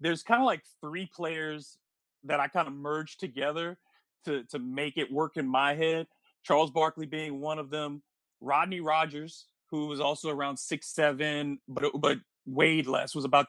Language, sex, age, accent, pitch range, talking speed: English, male, 30-49, American, 145-165 Hz, 175 wpm